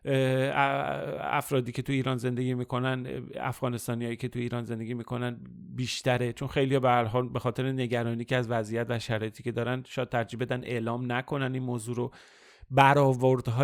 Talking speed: 155 wpm